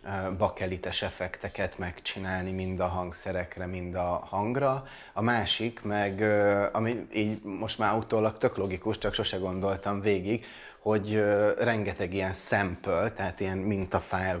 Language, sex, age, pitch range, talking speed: Hungarian, male, 30-49, 95-115 Hz, 120 wpm